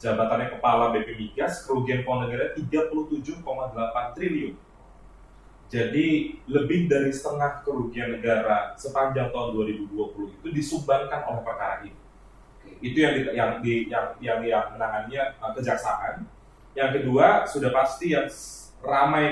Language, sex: Indonesian, male